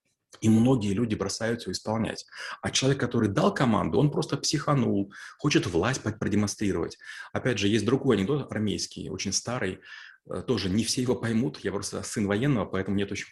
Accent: native